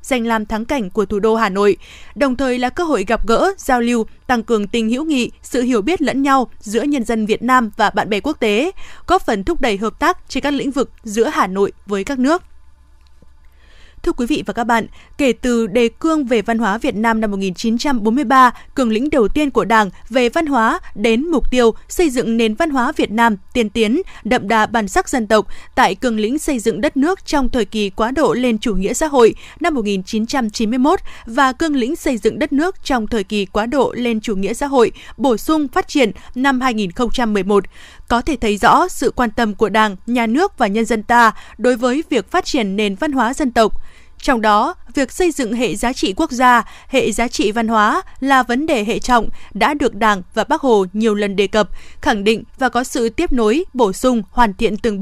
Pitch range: 220-275 Hz